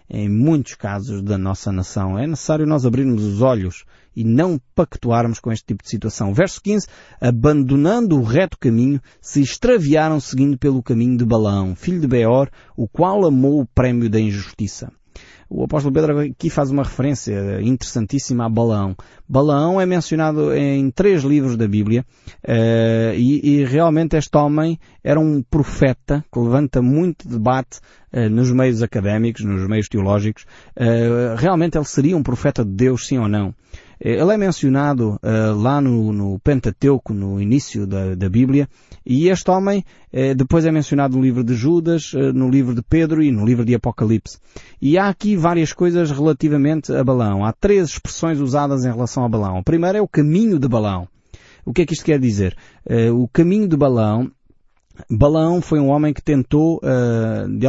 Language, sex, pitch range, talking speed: Portuguese, male, 115-150 Hz, 170 wpm